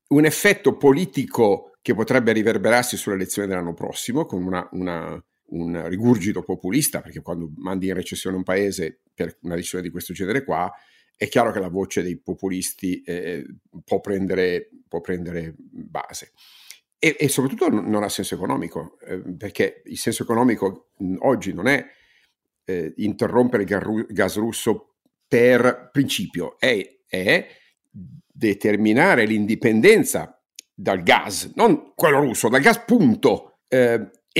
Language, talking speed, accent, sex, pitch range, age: Italian, 130 wpm, native, male, 95-135 Hz, 50-69